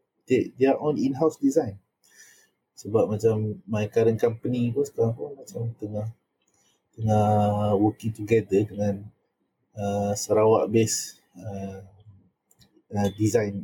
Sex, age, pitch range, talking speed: male, 30-49, 105-130 Hz, 105 wpm